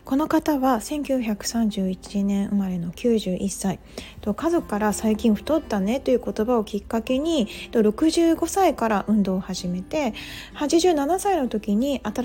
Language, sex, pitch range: Japanese, female, 205-275 Hz